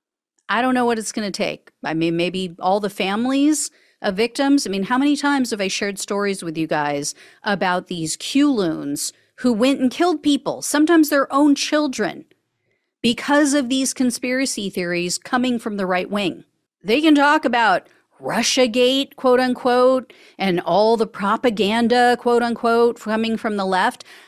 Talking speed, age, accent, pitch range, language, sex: 160 wpm, 40-59, American, 185-260 Hz, English, female